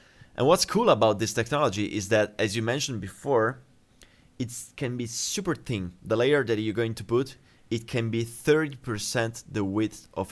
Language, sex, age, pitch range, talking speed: English, male, 30-49, 95-125 Hz, 180 wpm